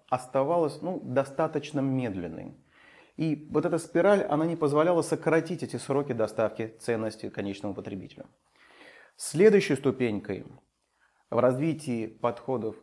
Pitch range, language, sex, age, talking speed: 115-160 Hz, Russian, male, 30-49, 105 wpm